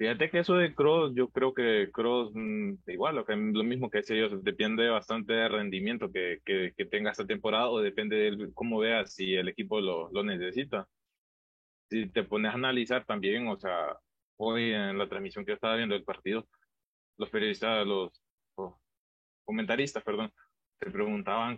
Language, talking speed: English, 180 wpm